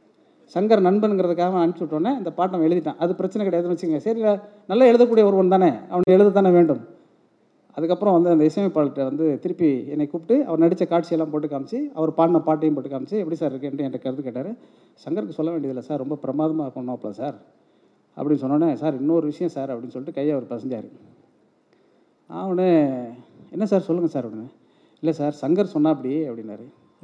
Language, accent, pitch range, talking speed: Tamil, native, 145-180 Hz, 170 wpm